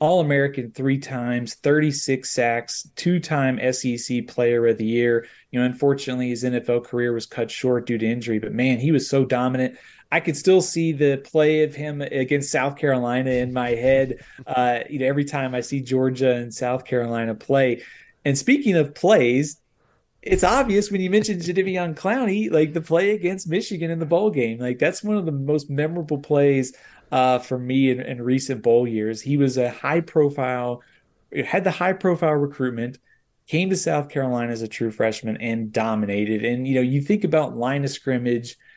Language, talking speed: English, 185 wpm